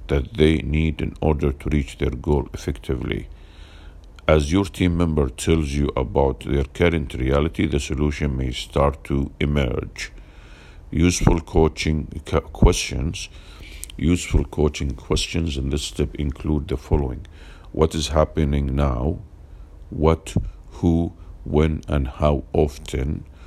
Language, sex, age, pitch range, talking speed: English, male, 50-69, 70-80 Hz, 125 wpm